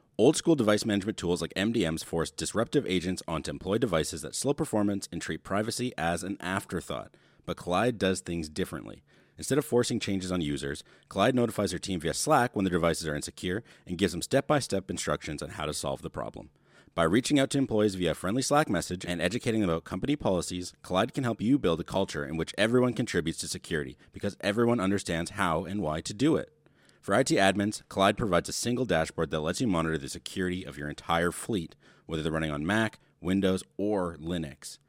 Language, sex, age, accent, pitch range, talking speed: English, male, 30-49, American, 80-105 Hz, 205 wpm